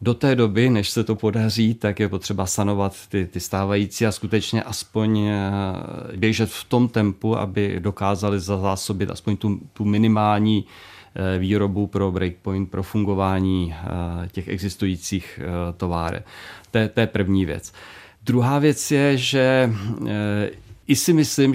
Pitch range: 95-110 Hz